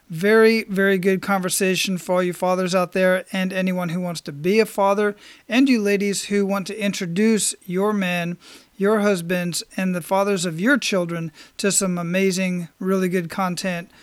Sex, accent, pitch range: male, American, 180-205 Hz